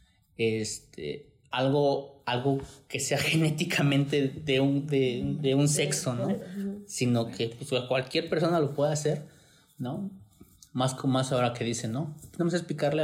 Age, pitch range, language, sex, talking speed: 30-49, 120-150 Hz, Spanish, male, 145 wpm